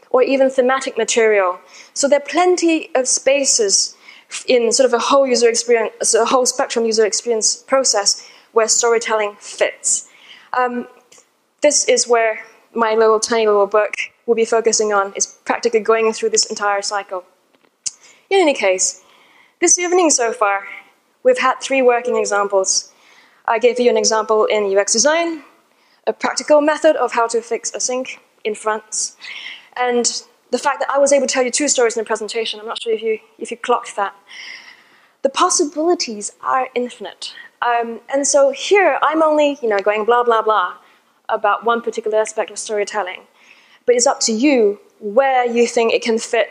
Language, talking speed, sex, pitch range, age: English, 175 wpm, female, 220-290 Hz, 10-29